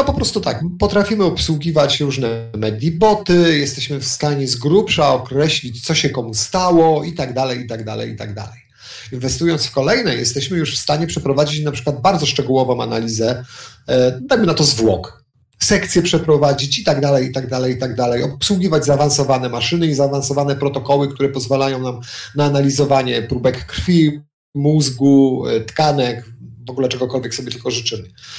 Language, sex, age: Polish, male, 40-59